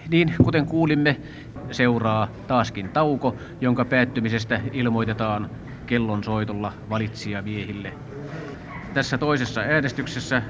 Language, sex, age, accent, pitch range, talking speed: Finnish, male, 30-49, native, 120-145 Hz, 80 wpm